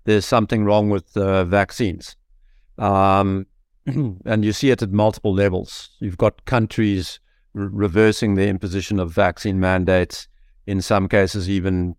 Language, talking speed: English, 135 wpm